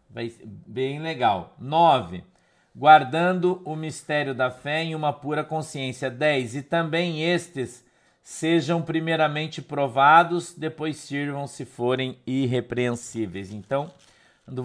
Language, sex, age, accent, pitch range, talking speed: Portuguese, male, 50-69, Brazilian, 125-155 Hz, 115 wpm